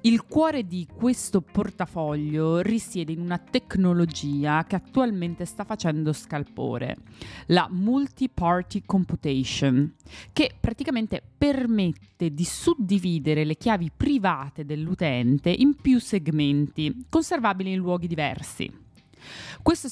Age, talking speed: 30-49, 100 wpm